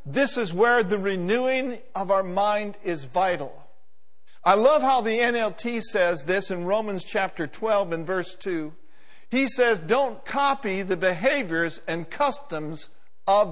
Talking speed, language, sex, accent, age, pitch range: 145 wpm, English, male, American, 60-79, 150-225 Hz